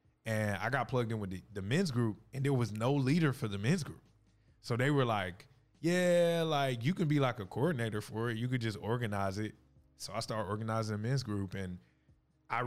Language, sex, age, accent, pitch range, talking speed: English, male, 20-39, American, 100-125 Hz, 225 wpm